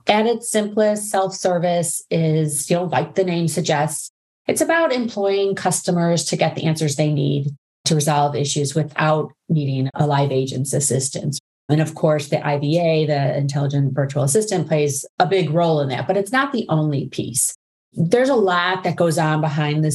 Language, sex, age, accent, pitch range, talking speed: English, female, 30-49, American, 145-180 Hz, 175 wpm